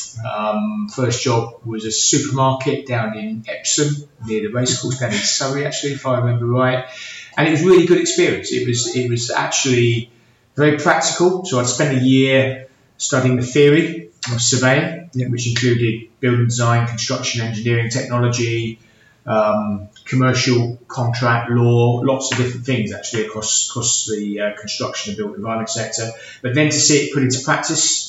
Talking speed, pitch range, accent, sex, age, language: 165 wpm, 115-135 Hz, British, male, 30-49, English